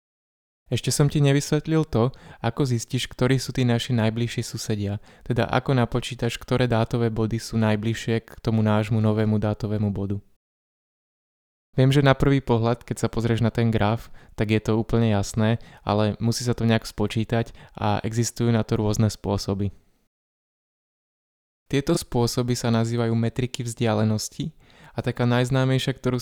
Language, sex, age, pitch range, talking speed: Slovak, male, 20-39, 110-125 Hz, 150 wpm